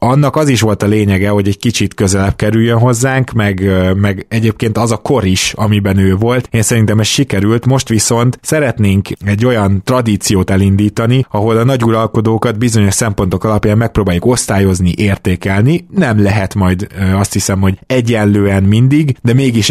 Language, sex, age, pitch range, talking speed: Hungarian, male, 20-39, 95-115 Hz, 160 wpm